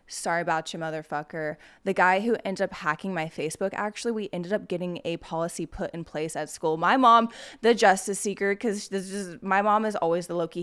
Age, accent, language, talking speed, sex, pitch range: 20-39, American, English, 215 wpm, female, 165-210 Hz